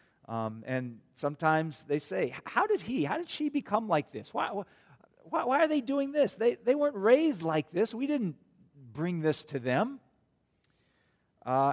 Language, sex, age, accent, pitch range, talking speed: English, male, 50-69, American, 140-205 Hz, 175 wpm